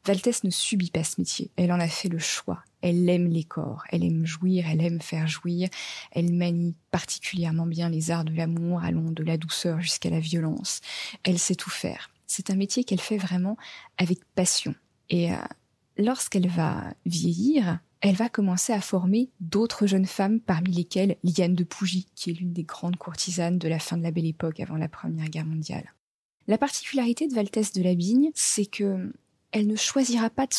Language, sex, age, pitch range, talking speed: French, female, 20-39, 165-200 Hz, 195 wpm